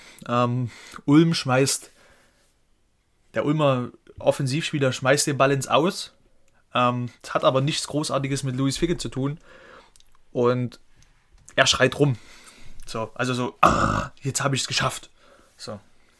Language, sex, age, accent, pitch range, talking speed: German, male, 20-39, German, 125-145 Hz, 135 wpm